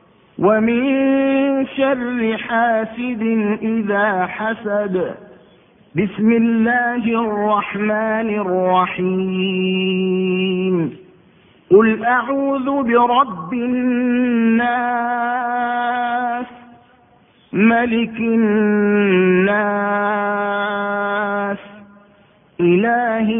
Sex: male